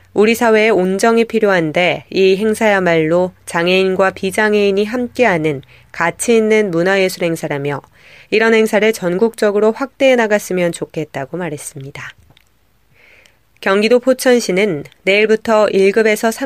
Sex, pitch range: female, 175-220 Hz